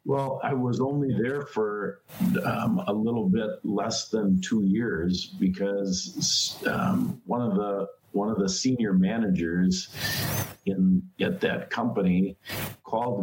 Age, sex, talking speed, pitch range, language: 50-69, male, 130 wpm, 90-105 Hz, English